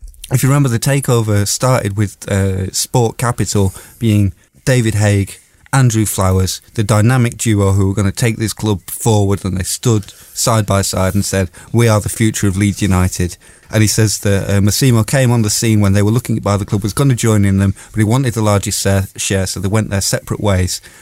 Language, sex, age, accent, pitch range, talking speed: English, male, 30-49, British, 100-140 Hz, 220 wpm